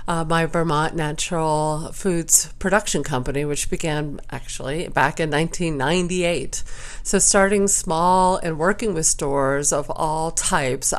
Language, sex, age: English, female, 50-69